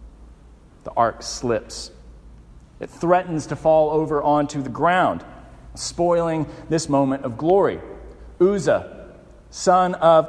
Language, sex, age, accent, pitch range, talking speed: English, male, 40-59, American, 95-155 Hz, 110 wpm